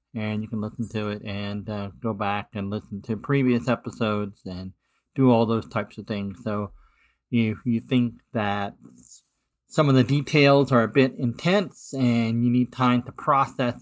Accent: American